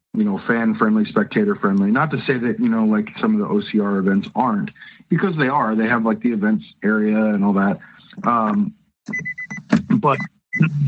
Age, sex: 40-59, male